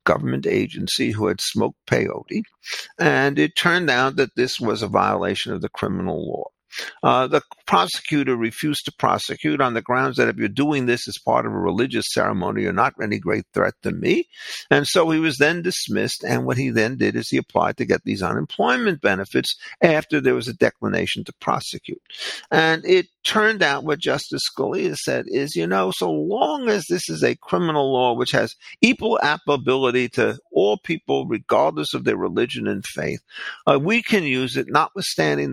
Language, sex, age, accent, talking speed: English, male, 50-69, American, 185 wpm